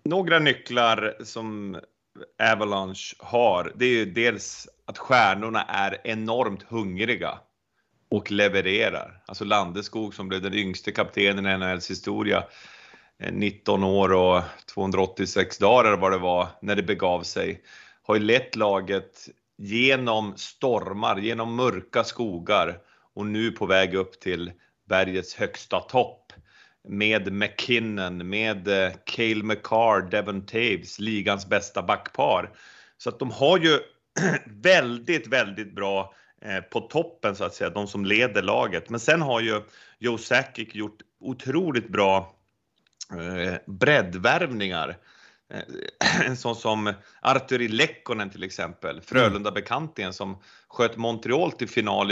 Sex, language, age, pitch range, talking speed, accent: male, English, 30-49, 95-115 Hz, 125 wpm, Swedish